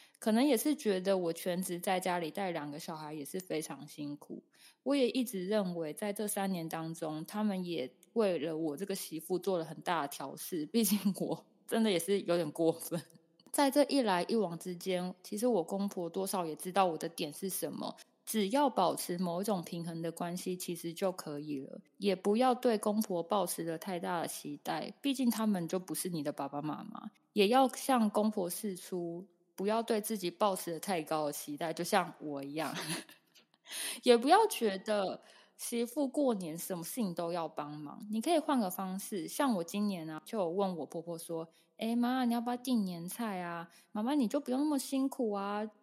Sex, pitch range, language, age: female, 170-220 Hz, Chinese, 20-39